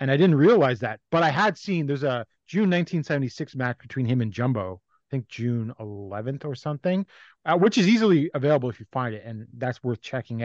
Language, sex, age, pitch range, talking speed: English, male, 30-49, 125-155 Hz, 210 wpm